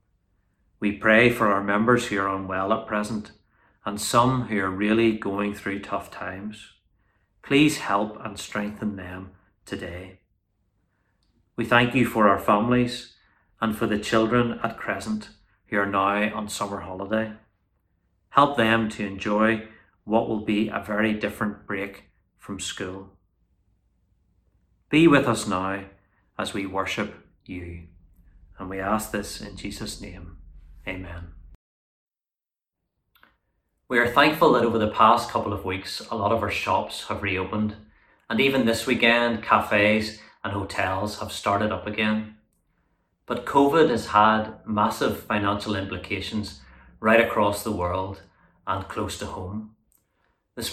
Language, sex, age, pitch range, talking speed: English, male, 30-49, 95-110 Hz, 135 wpm